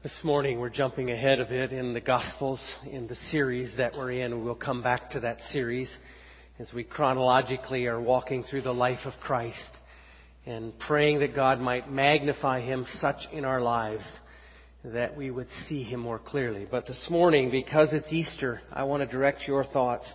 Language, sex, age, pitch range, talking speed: English, male, 40-59, 120-150 Hz, 185 wpm